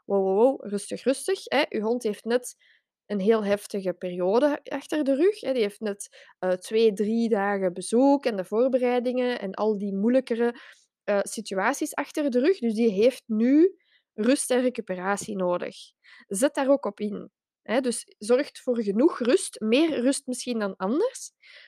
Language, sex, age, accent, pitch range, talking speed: Dutch, female, 20-39, Dutch, 205-255 Hz, 170 wpm